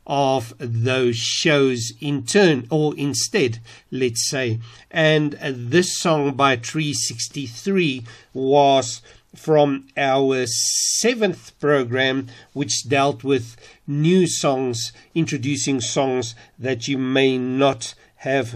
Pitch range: 120-145 Hz